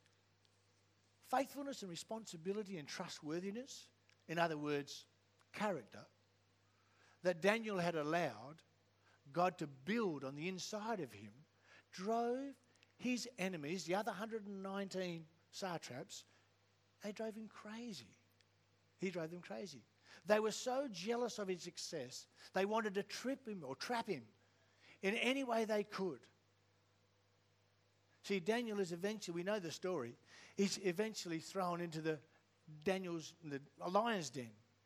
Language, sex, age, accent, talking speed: English, male, 60-79, Australian, 125 wpm